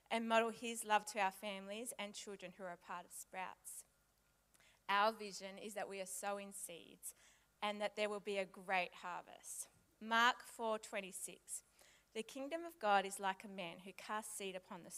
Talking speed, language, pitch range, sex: 190 wpm, English, 195-230 Hz, female